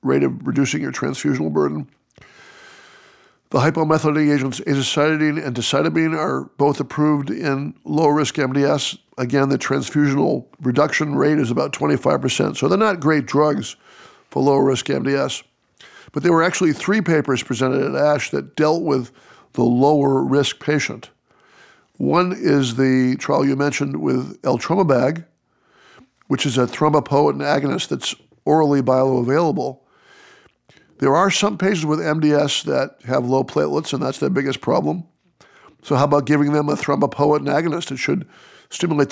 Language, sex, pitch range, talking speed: English, male, 135-155 Hz, 140 wpm